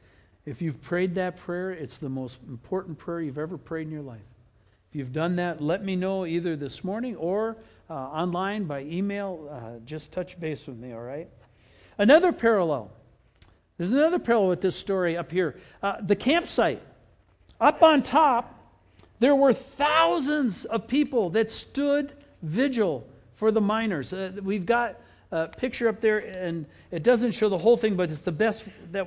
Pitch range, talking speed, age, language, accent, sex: 145-230 Hz, 175 wpm, 60-79, English, American, male